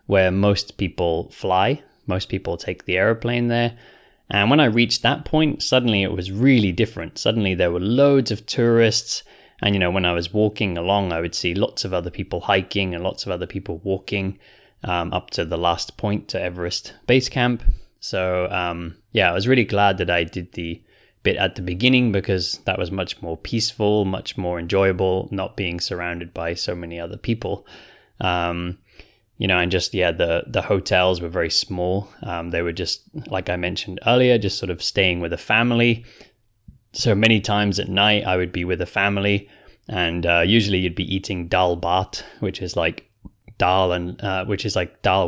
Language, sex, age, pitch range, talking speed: English, male, 20-39, 90-105 Hz, 195 wpm